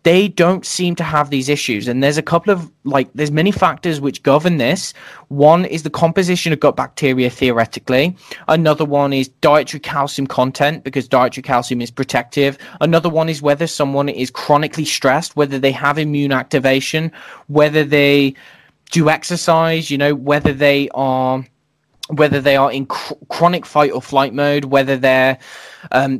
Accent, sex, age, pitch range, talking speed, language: British, male, 20-39, 135-155 Hz, 165 wpm, English